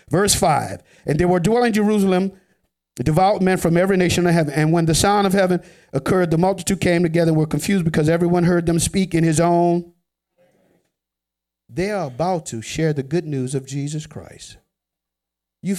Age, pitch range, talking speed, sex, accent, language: 50-69, 115-180 Hz, 190 wpm, male, American, English